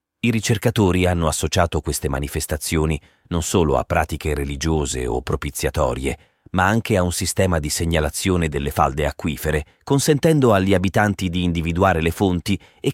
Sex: male